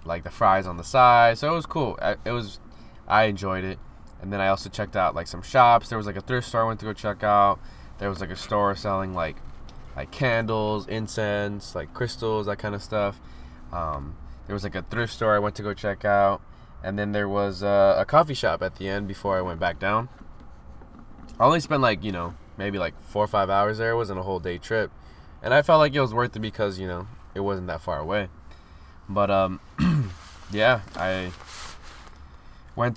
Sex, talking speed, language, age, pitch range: male, 220 wpm, English, 20-39, 85-110 Hz